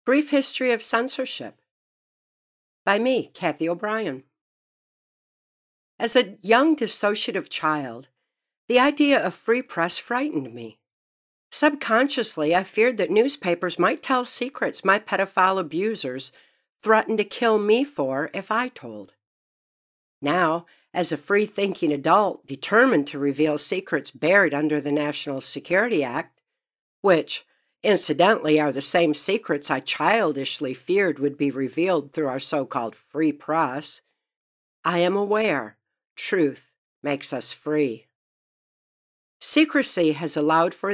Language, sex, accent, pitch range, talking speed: English, female, American, 145-220 Hz, 120 wpm